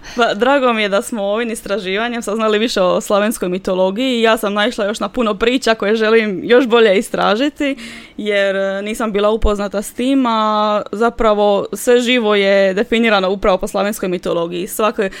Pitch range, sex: 200-245 Hz, female